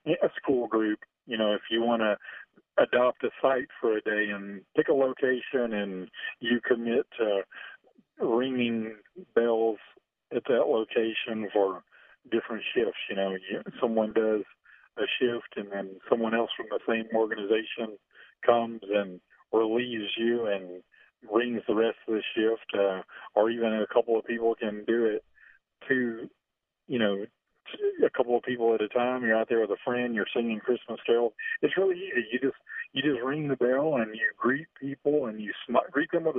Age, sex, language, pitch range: 40-59, male, English, 110-145 Hz